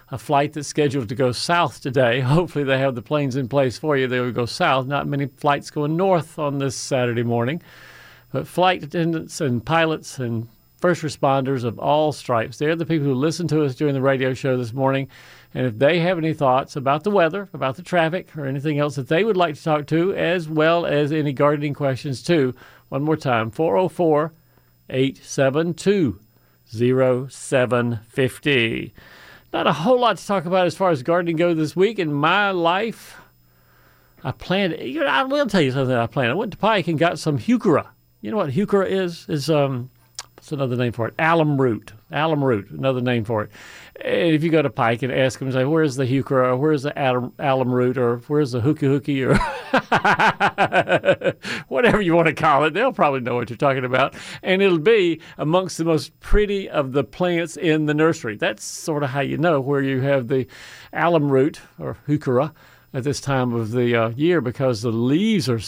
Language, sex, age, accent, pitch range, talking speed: English, male, 50-69, American, 130-165 Hz, 195 wpm